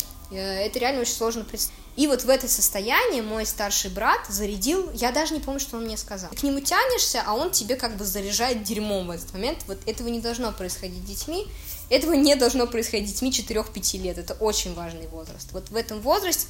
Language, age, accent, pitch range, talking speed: Russian, 20-39, native, 185-235 Hz, 205 wpm